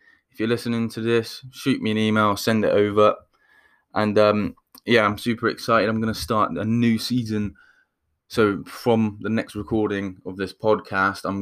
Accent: British